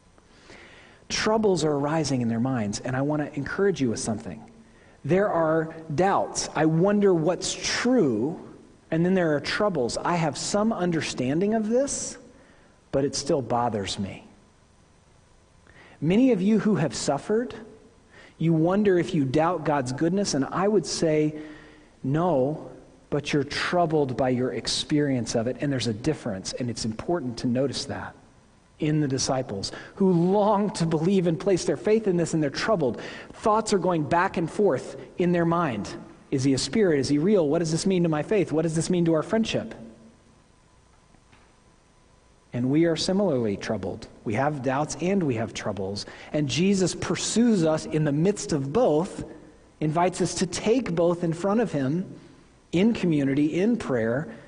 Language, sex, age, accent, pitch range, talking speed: English, male, 40-59, American, 130-185 Hz, 170 wpm